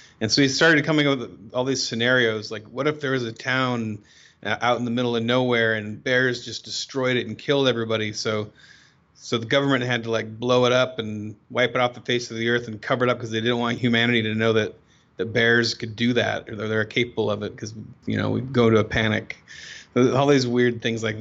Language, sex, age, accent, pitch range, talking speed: English, male, 30-49, American, 110-120 Hz, 245 wpm